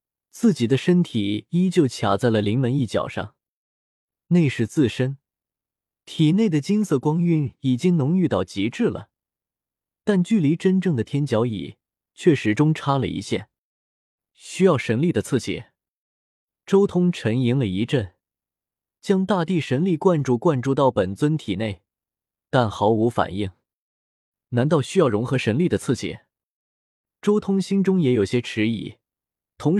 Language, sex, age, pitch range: Chinese, male, 20-39, 110-170 Hz